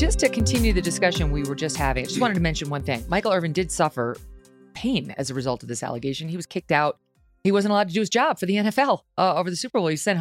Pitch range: 140-210 Hz